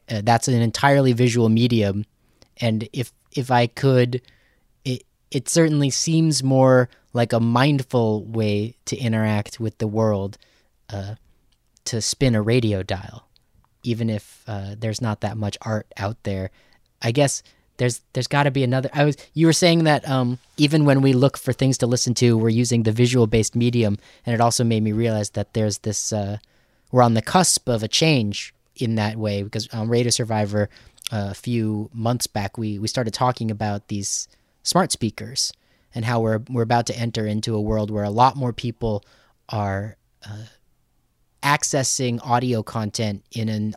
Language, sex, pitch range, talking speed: English, male, 105-125 Hz, 175 wpm